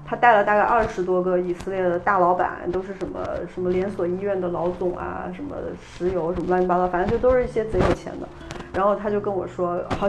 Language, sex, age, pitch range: Chinese, female, 30-49, 180-235 Hz